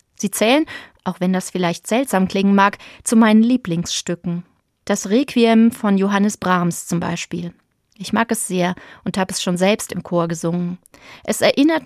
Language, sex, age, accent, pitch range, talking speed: German, female, 30-49, German, 185-235 Hz, 165 wpm